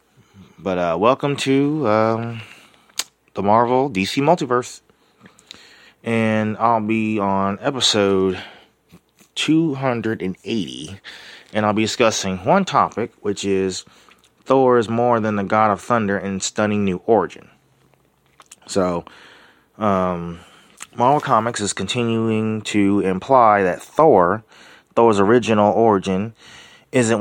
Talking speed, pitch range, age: 110 wpm, 95-115 Hz, 30-49